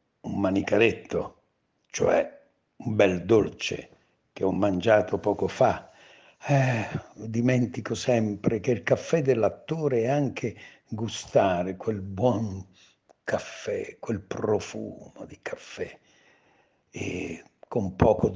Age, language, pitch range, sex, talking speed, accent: 60-79, Italian, 105-135 Hz, male, 100 wpm, native